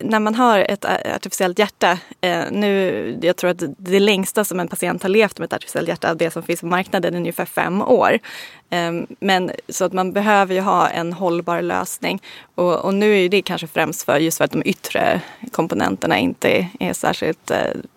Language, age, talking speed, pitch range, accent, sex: Swedish, 20-39, 195 wpm, 170-200 Hz, native, female